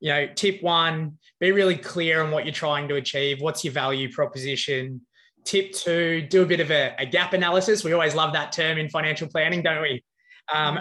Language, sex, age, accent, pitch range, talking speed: English, male, 20-39, Australian, 145-175 Hz, 210 wpm